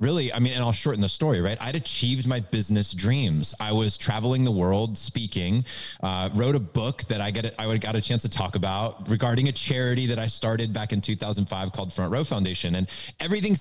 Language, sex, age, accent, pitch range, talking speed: English, male, 30-49, American, 115-160 Hz, 225 wpm